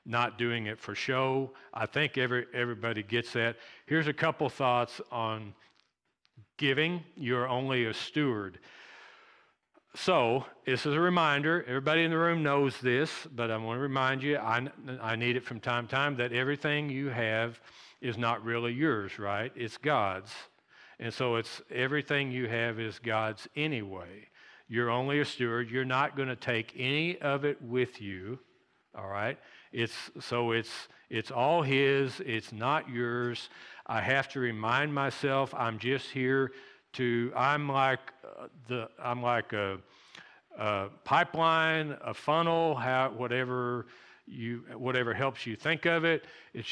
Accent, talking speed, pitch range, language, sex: American, 155 wpm, 115-140 Hz, English, male